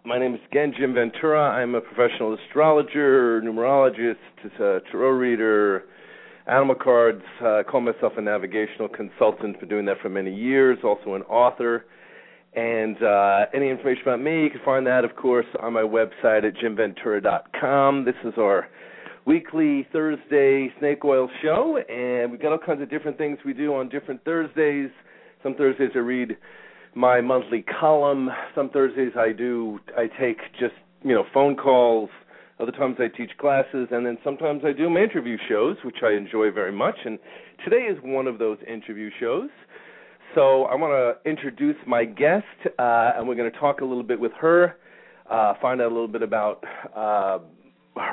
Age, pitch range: 40-59, 115-145 Hz